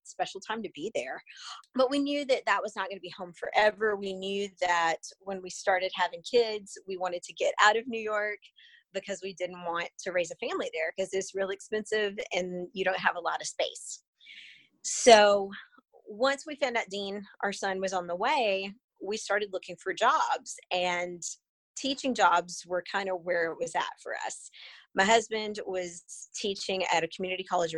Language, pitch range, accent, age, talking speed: English, 175-215 Hz, American, 30-49, 195 wpm